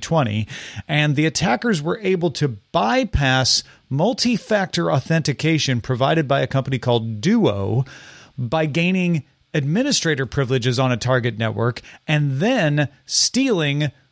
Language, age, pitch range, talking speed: English, 40-59, 130-170 Hz, 110 wpm